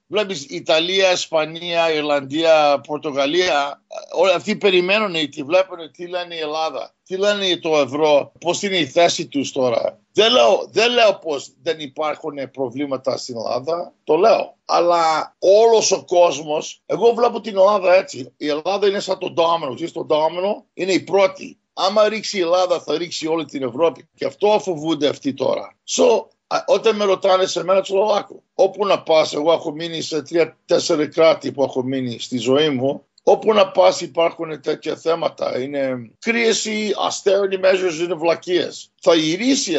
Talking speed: 165 wpm